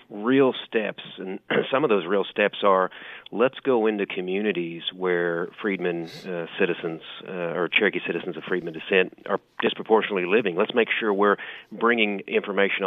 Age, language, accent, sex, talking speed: 40-59, English, American, male, 155 wpm